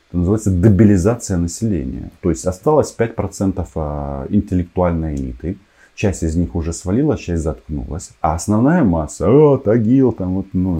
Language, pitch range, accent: Russian, 80-100 Hz, native